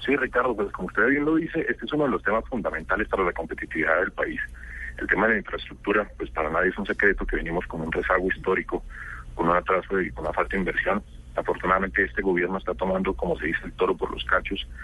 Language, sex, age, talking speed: Spanish, male, 40-59, 240 wpm